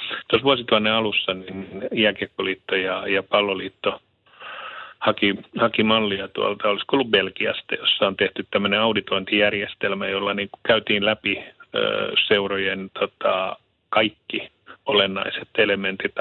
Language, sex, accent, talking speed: Finnish, male, native, 95 wpm